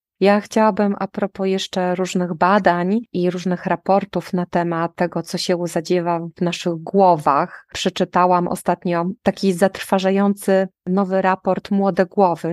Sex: female